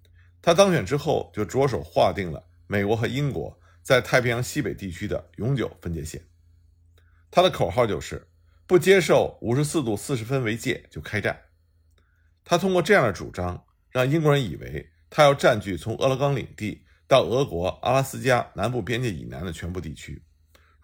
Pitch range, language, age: 85-140 Hz, Chinese, 50-69